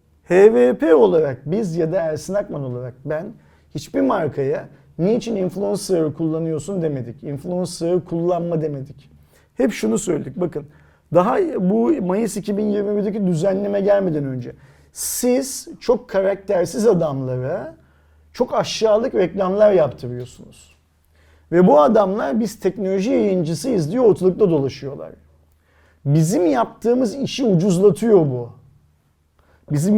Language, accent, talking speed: Turkish, native, 105 wpm